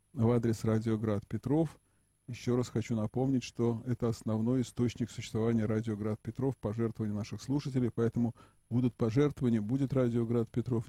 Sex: male